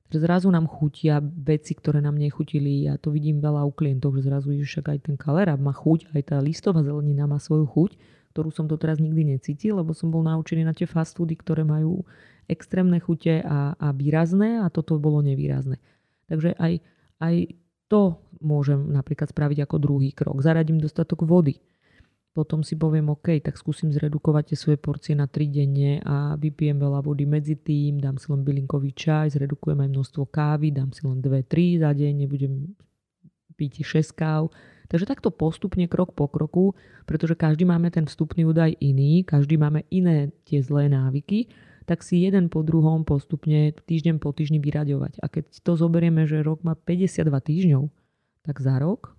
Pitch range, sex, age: 145-165 Hz, female, 30-49